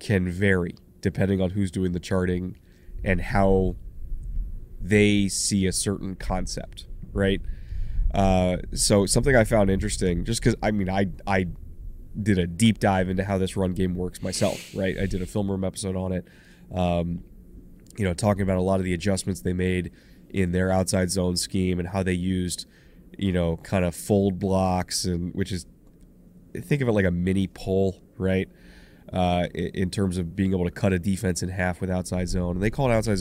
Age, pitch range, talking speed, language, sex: 20-39, 90-100 Hz, 190 wpm, English, male